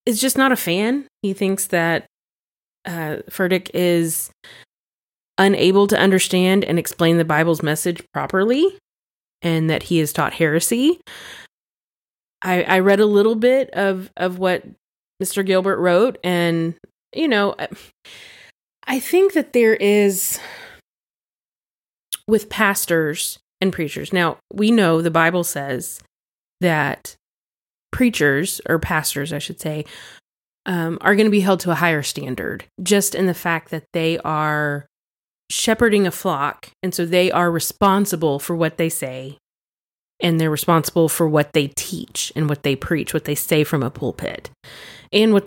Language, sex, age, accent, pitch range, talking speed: English, female, 20-39, American, 155-195 Hz, 145 wpm